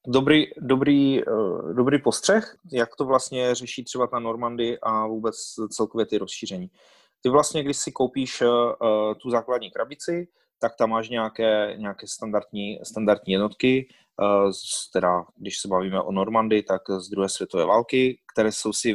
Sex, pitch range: male, 105-125 Hz